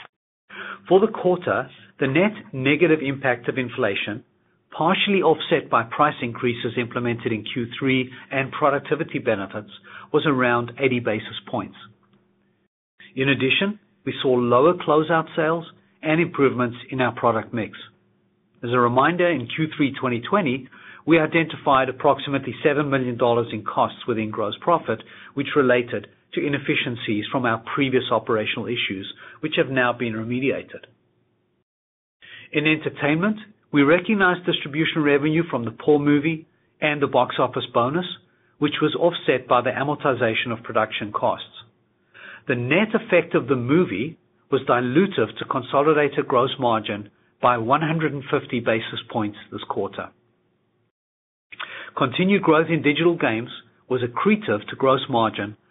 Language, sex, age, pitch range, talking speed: English, male, 40-59, 120-155 Hz, 130 wpm